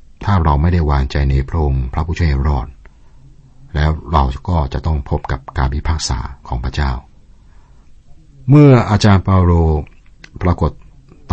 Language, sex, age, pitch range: Thai, male, 60-79, 70-85 Hz